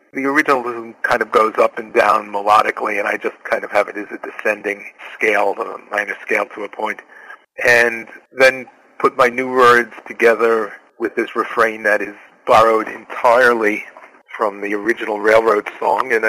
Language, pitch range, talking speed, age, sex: English, 100-125 Hz, 170 wpm, 40-59, male